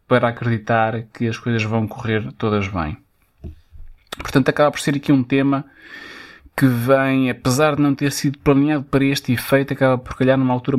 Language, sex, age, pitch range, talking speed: Portuguese, male, 20-39, 115-135 Hz, 180 wpm